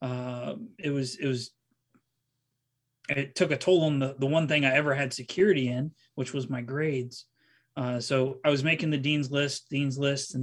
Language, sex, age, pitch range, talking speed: English, male, 30-49, 125-145 Hz, 195 wpm